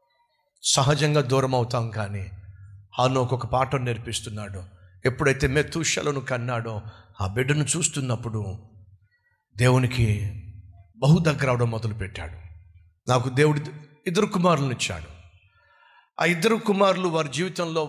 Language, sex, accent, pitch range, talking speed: Telugu, male, native, 105-165 Hz, 100 wpm